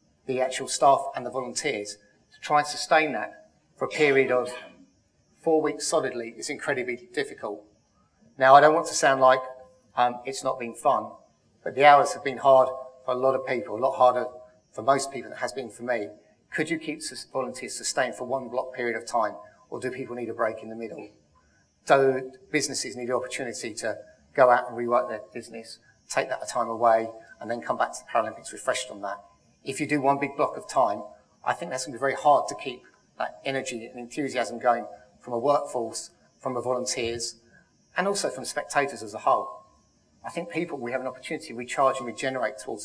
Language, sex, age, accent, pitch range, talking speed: English, male, 30-49, British, 120-145 Hz, 210 wpm